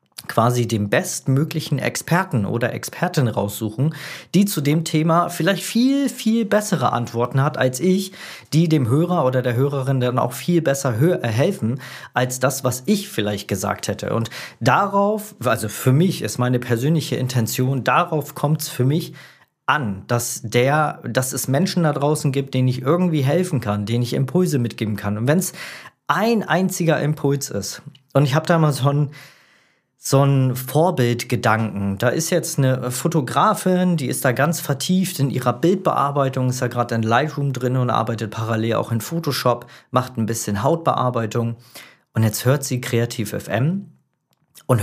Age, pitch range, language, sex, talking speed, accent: 40-59, 120-155 Hz, German, male, 165 wpm, German